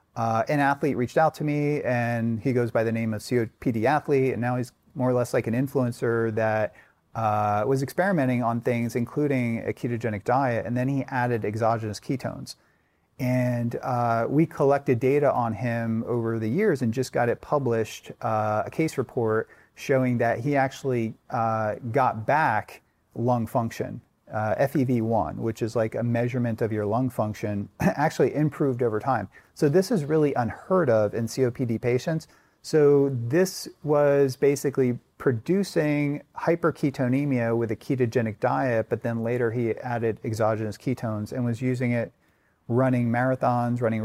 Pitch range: 115-140 Hz